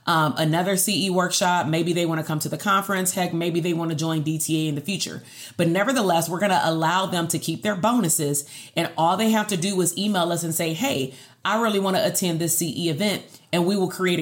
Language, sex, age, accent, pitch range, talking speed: English, female, 30-49, American, 155-185 Hz, 225 wpm